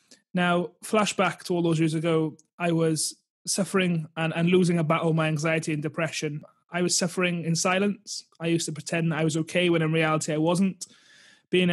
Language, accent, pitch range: English, British, 160-180 Hz